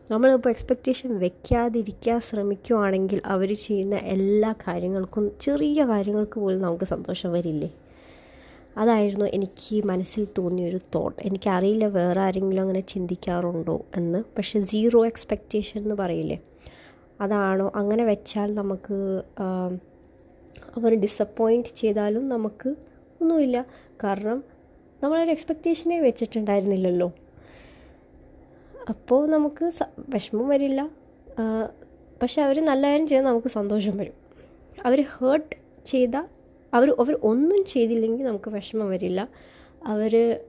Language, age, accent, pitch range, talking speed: Malayalam, 20-39, native, 190-245 Hz, 100 wpm